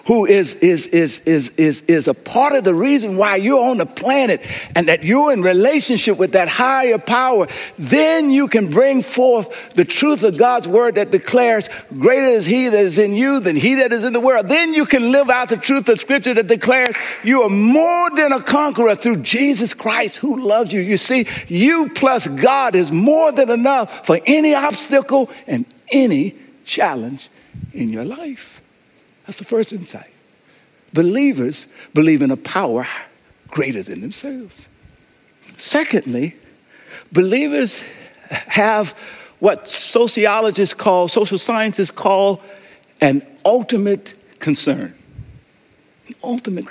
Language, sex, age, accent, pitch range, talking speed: English, male, 60-79, American, 200-270 Hz, 155 wpm